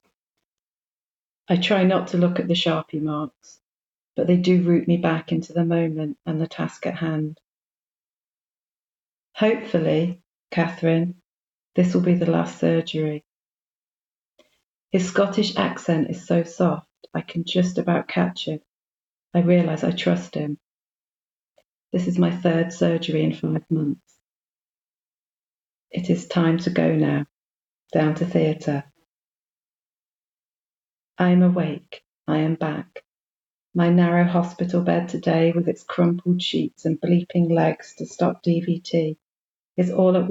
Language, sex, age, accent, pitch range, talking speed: English, female, 40-59, British, 160-180 Hz, 130 wpm